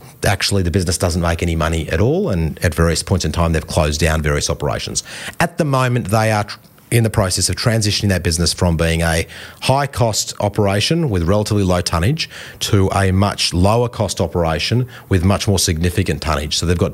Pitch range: 90-115 Hz